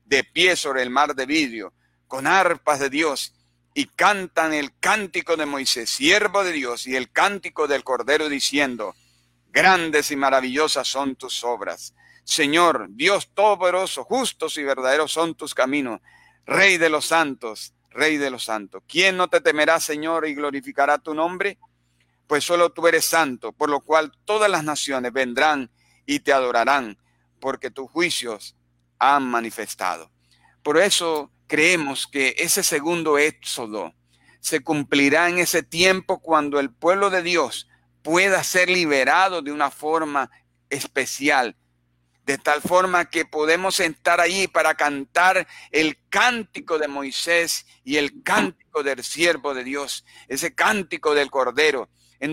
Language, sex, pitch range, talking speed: Spanish, male, 135-175 Hz, 145 wpm